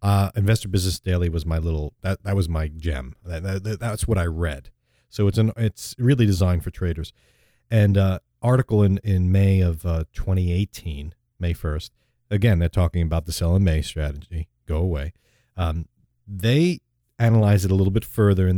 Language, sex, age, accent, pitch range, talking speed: English, male, 40-59, American, 85-115 Hz, 185 wpm